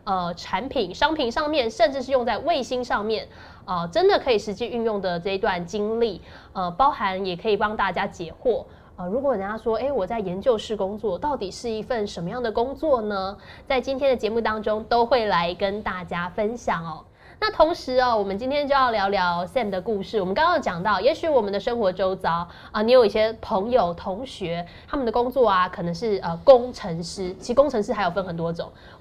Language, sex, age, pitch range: Chinese, female, 20-39, 190-255 Hz